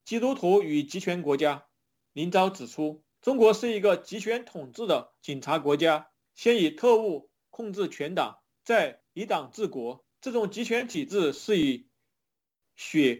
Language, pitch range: Chinese, 155-215 Hz